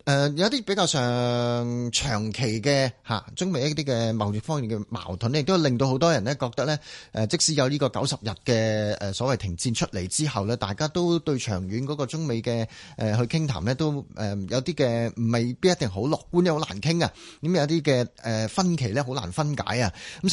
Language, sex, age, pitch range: Chinese, male, 30-49, 110-145 Hz